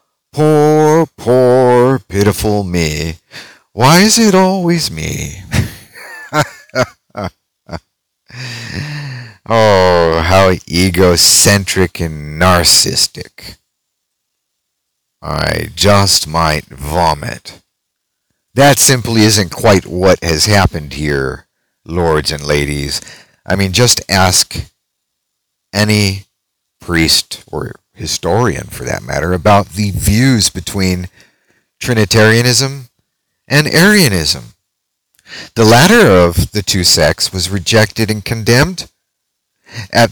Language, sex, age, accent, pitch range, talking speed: English, male, 50-69, American, 90-125 Hz, 85 wpm